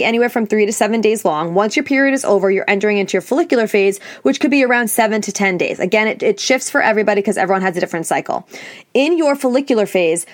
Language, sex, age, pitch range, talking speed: English, female, 20-39, 205-260 Hz, 245 wpm